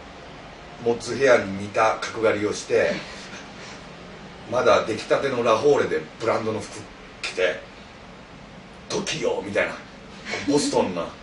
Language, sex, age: Japanese, male, 30-49